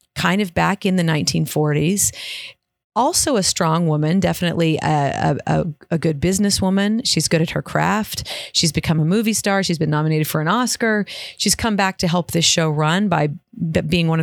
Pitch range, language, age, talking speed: 150-185 Hz, English, 40-59, 190 wpm